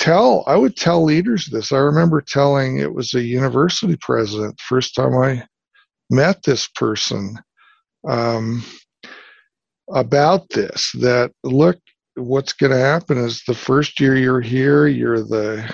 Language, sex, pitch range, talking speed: English, male, 115-140 Hz, 135 wpm